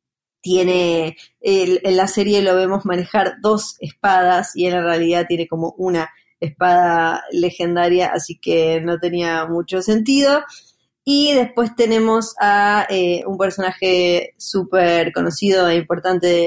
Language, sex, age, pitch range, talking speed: Spanish, female, 20-39, 175-205 Hz, 130 wpm